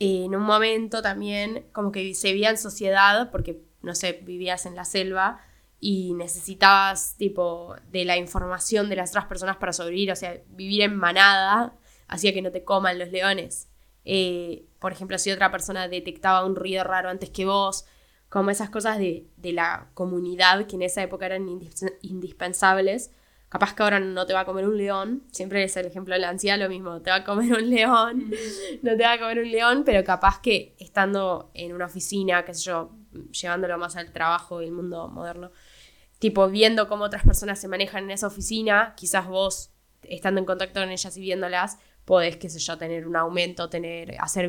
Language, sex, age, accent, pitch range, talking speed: English, female, 10-29, Argentinian, 180-200 Hz, 195 wpm